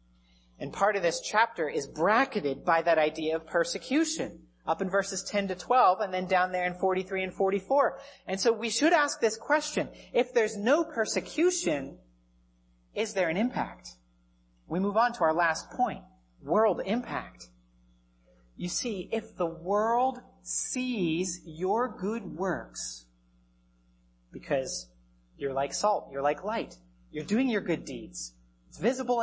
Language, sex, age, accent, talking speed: English, male, 30-49, American, 150 wpm